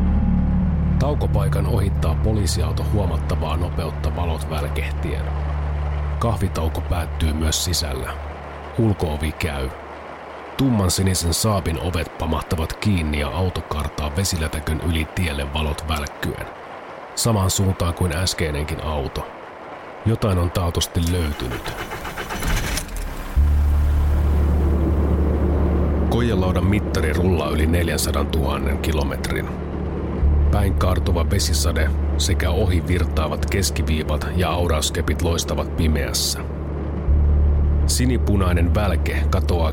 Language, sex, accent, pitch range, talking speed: Finnish, male, native, 75-85 Hz, 80 wpm